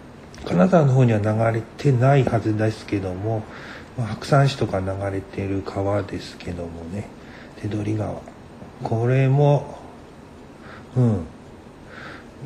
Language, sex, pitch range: Japanese, male, 105-130 Hz